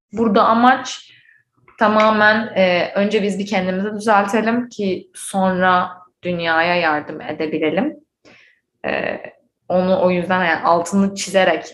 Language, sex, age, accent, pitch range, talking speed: Turkish, female, 20-39, native, 180-225 Hz, 95 wpm